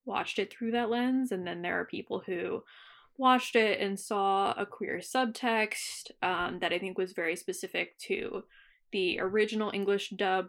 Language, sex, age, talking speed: English, female, 20-39, 170 wpm